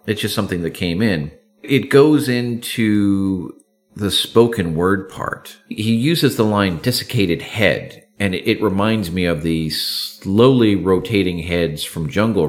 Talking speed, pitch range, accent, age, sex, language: 150 wpm, 90-120 Hz, American, 40-59, male, English